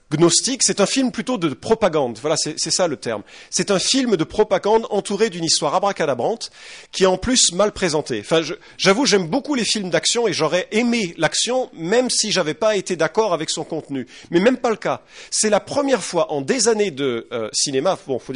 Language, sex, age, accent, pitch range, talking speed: English, male, 40-59, French, 150-215 Hz, 220 wpm